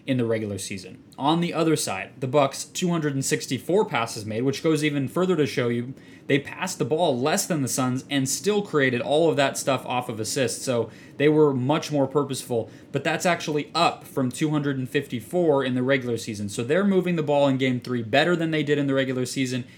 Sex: male